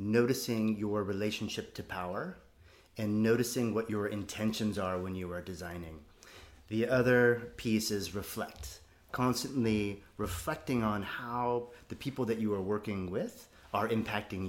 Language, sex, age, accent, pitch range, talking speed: English, male, 30-49, American, 95-115 Hz, 135 wpm